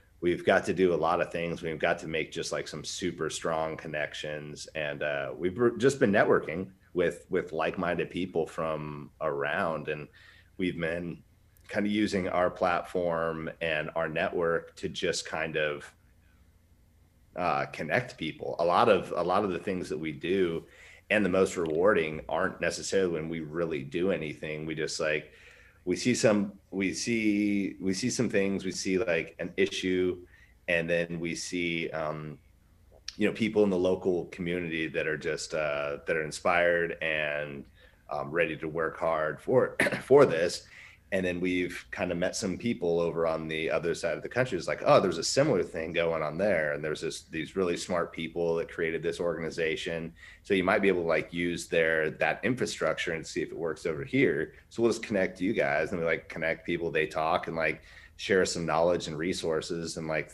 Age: 30-49